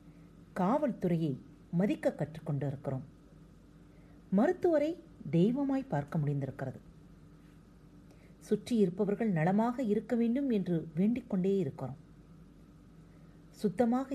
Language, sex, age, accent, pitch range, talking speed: Tamil, female, 40-59, native, 170-250 Hz, 70 wpm